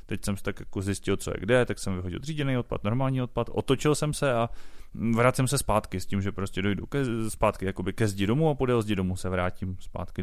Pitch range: 95-130 Hz